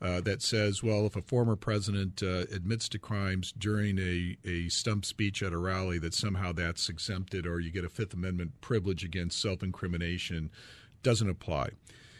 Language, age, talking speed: English, 40-59, 170 wpm